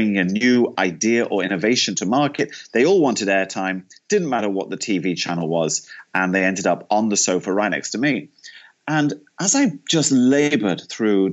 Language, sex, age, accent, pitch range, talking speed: English, male, 30-49, British, 110-160 Hz, 185 wpm